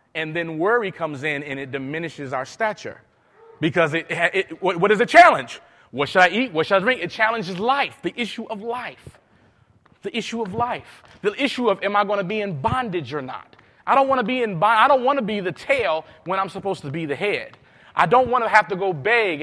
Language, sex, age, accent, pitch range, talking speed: English, male, 30-49, American, 170-245 Hz, 235 wpm